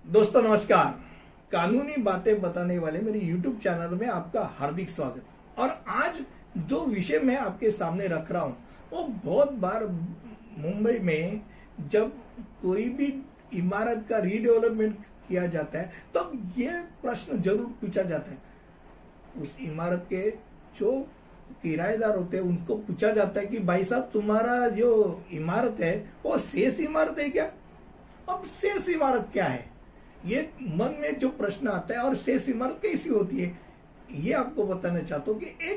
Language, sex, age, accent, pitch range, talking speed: Hindi, male, 60-79, native, 185-240 Hz, 150 wpm